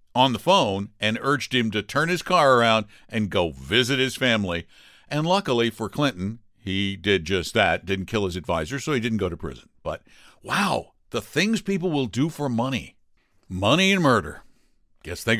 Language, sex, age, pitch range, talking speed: English, male, 60-79, 100-140 Hz, 185 wpm